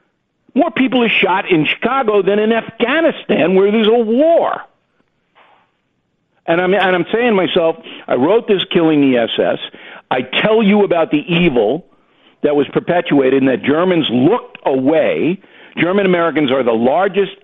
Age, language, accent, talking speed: 60-79, English, American, 150 wpm